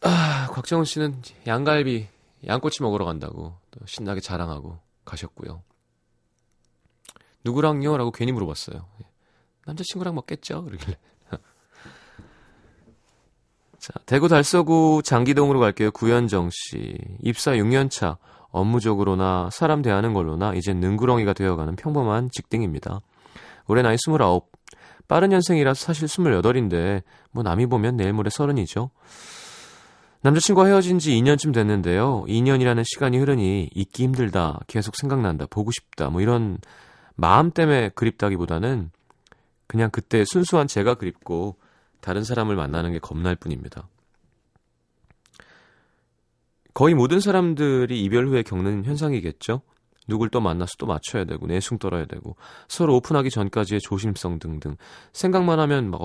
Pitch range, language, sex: 95-135 Hz, Korean, male